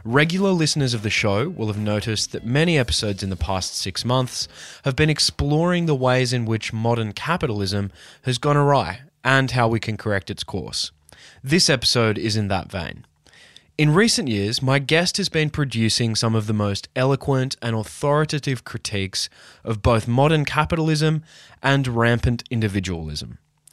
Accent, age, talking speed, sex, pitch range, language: Australian, 20-39, 160 wpm, male, 105-145 Hz, English